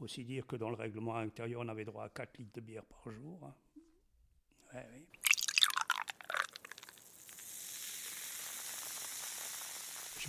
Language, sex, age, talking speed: French, male, 60-79, 115 wpm